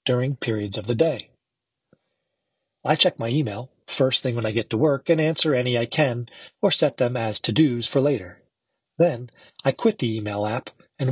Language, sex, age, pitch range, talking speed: English, male, 40-59, 110-145 Hz, 195 wpm